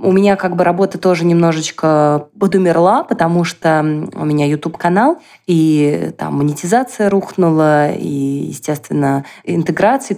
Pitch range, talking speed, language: 160-200 Hz, 120 wpm, Russian